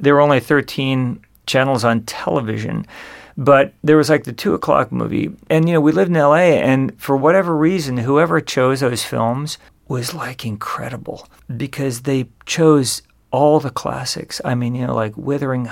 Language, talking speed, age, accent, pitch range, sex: English, 170 wpm, 50-69, American, 125-145 Hz, male